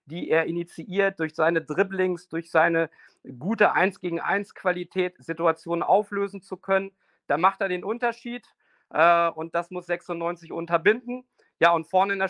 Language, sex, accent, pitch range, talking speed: German, male, German, 170-205 Hz, 160 wpm